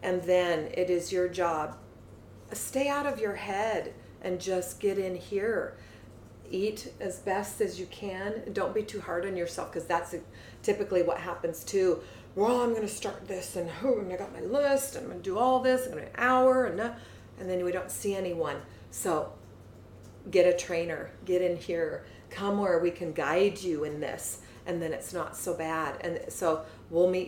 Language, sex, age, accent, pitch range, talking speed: English, female, 40-59, American, 170-200 Hz, 190 wpm